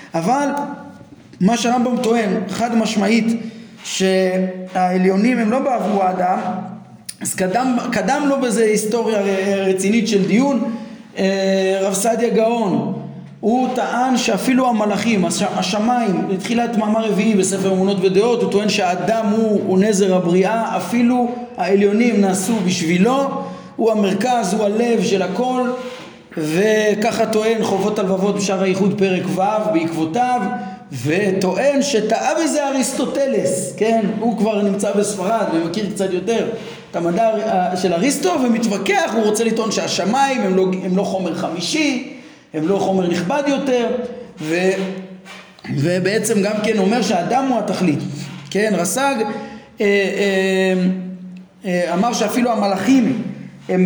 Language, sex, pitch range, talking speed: Hebrew, male, 190-235 Hz, 125 wpm